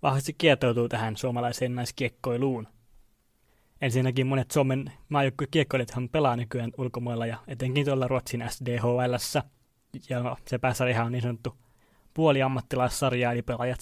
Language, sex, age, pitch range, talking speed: Finnish, male, 20-39, 120-135 Hz, 125 wpm